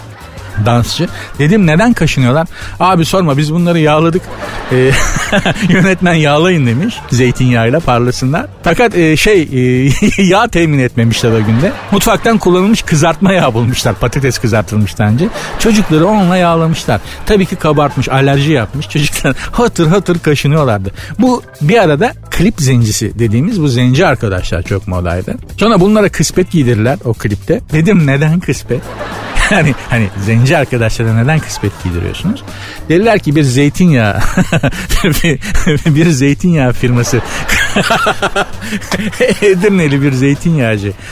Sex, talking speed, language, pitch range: male, 120 wpm, Turkish, 120-180 Hz